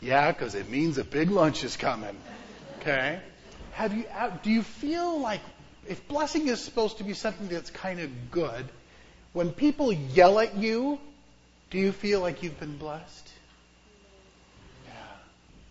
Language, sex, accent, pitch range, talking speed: English, male, American, 155-225 Hz, 155 wpm